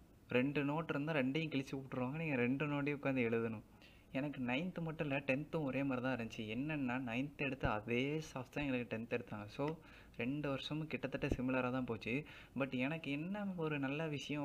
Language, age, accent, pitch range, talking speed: Tamil, 20-39, native, 125-150 Hz, 165 wpm